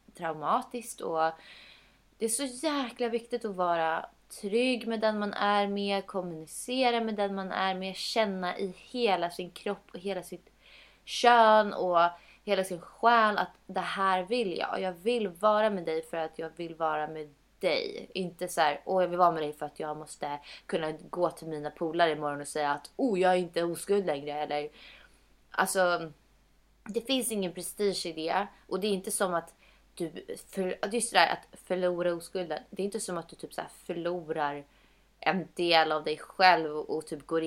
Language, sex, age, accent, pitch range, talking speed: Swedish, female, 20-39, native, 160-200 Hz, 195 wpm